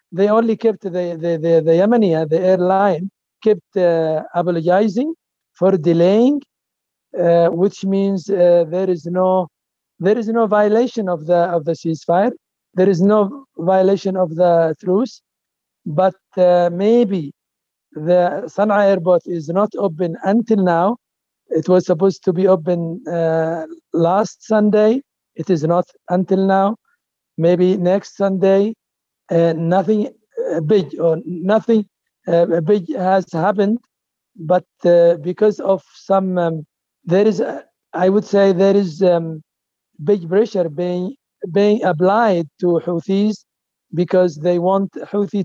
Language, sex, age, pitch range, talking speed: English, male, 60-79, 170-200 Hz, 130 wpm